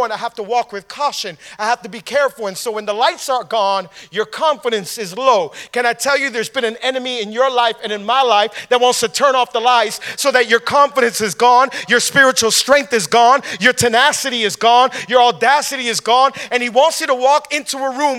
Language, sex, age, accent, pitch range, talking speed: English, male, 40-59, American, 215-285 Hz, 240 wpm